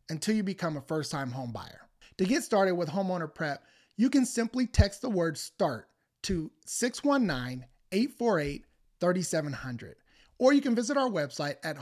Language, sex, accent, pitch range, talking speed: English, male, American, 145-205 Hz, 145 wpm